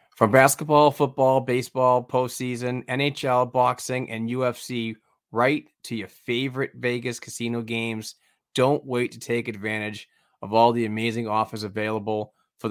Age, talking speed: 30-49, 130 wpm